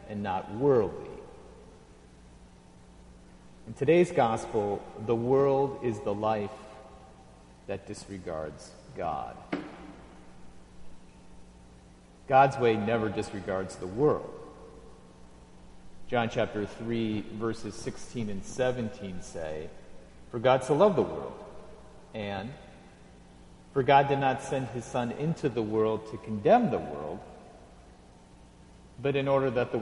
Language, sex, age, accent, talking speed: English, male, 50-69, American, 110 wpm